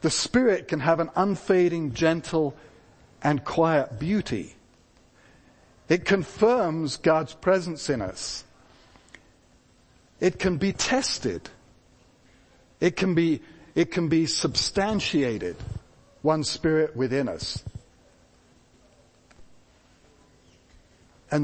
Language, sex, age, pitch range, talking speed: English, male, 60-79, 125-180 Hz, 85 wpm